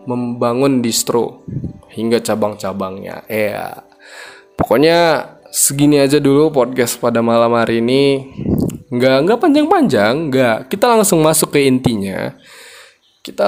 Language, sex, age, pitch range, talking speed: Indonesian, male, 20-39, 115-145 Hz, 110 wpm